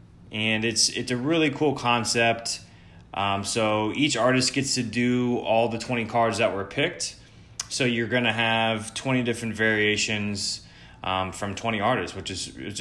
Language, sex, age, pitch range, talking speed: English, male, 20-39, 100-115 Hz, 170 wpm